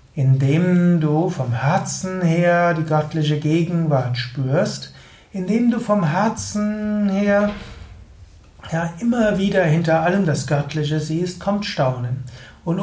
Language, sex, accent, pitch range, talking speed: German, male, German, 135-185 Hz, 115 wpm